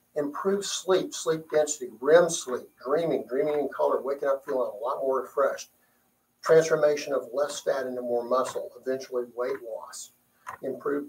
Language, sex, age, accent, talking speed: English, male, 60-79, American, 150 wpm